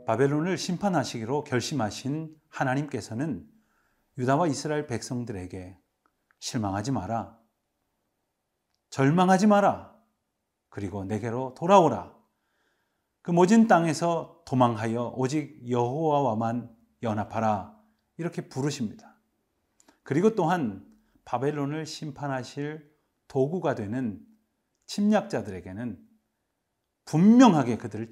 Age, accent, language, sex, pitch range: 40-59, native, Korean, male, 115-165 Hz